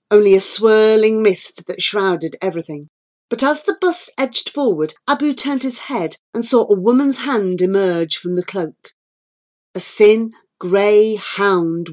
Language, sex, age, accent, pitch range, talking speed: English, female, 40-59, British, 180-230 Hz, 150 wpm